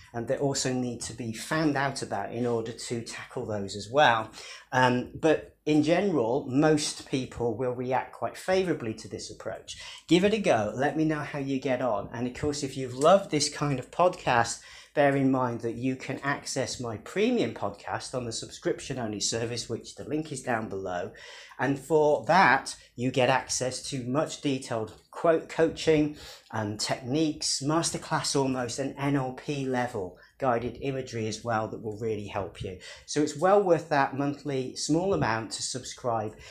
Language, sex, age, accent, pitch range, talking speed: English, male, 40-59, British, 115-150 Hz, 175 wpm